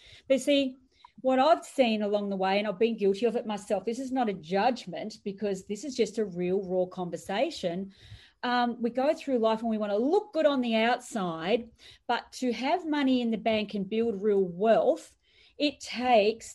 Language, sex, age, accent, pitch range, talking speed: English, female, 40-59, Australian, 195-250 Hz, 200 wpm